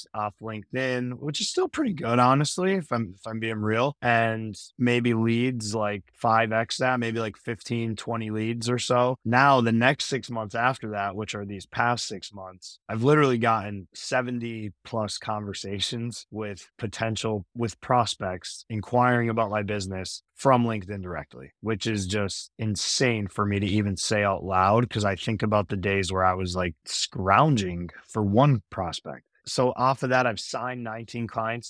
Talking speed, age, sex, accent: 170 wpm, 20-39, male, American